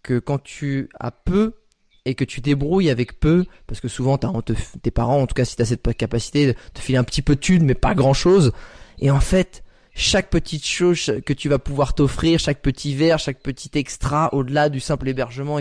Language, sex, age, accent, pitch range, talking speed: French, male, 20-39, French, 120-150 Hz, 220 wpm